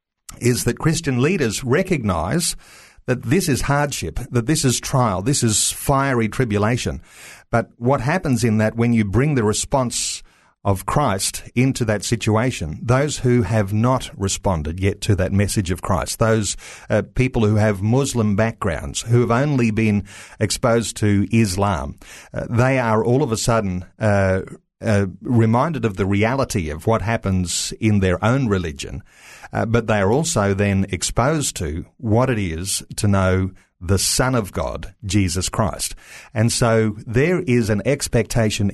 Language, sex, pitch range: English, male, 100-125 Hz